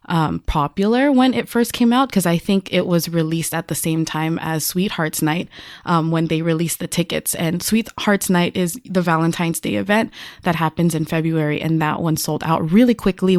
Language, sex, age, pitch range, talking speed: English, female, 20-39, 165-210 Hz, 200 wpm